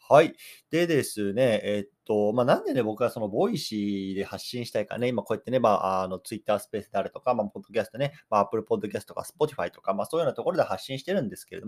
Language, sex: Japanese, male